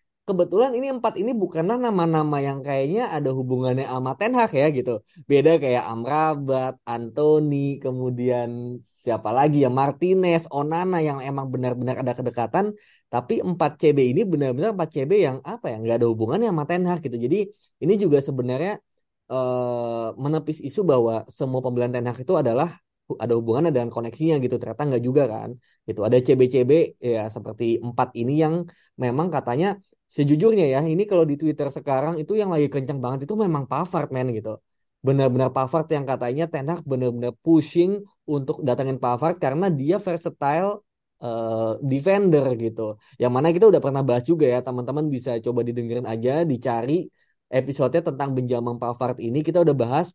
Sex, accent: male, native